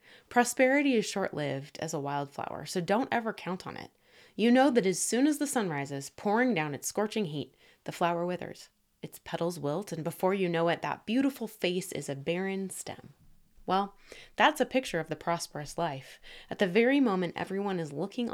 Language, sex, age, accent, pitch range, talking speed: English, female, 20-39, American, 165-240 Hz, 195 wpm